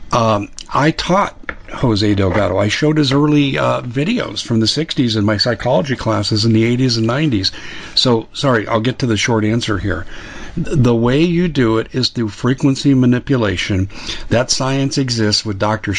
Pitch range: 105-125 Hz